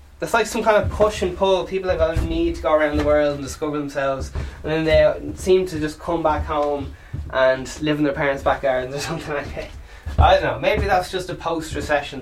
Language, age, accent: English, 20-39, Irish